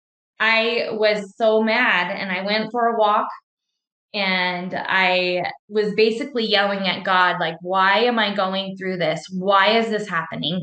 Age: 20-39